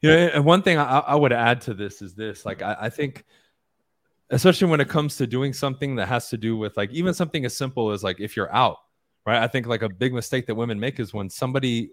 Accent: American